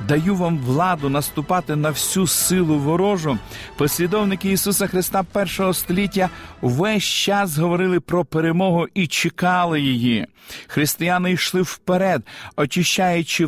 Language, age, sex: Ukrainian, 50-69, male